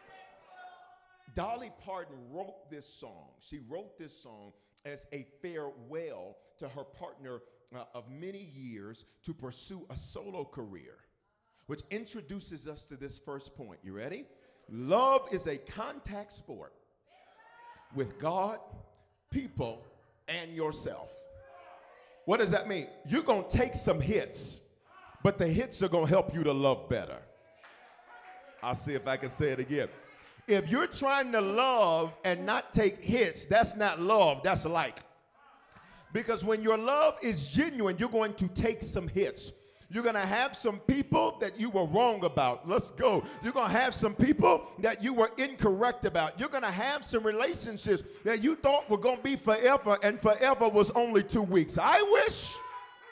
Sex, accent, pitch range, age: male, American, 155-240 Hz, 40-59